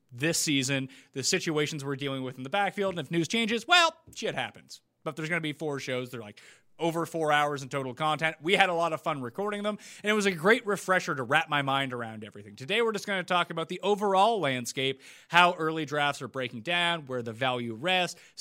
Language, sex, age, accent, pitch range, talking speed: English, male, 30-49, American, 130-195 Hz, 235 wpm